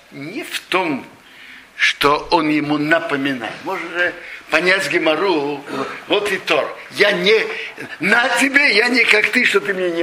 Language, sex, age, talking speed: Russian, male, 60-79, 160 wpm